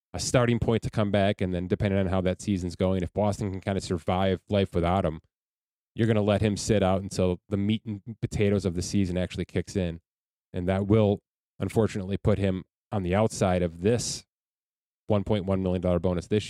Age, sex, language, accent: 20-39, male, English, American